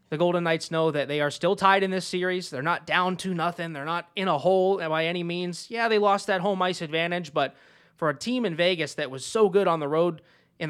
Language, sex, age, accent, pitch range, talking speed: English, male, 20-39, American, 150-185 Hz, 260 wpm